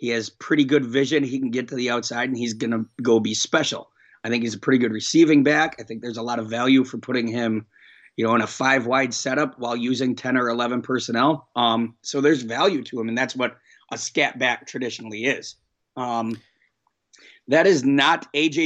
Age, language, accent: 30-49, English, American